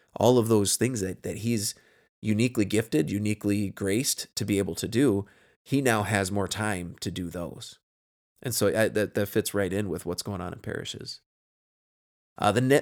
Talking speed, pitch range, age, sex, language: 190 wpm, 100-135 Hz, 20-39, male, English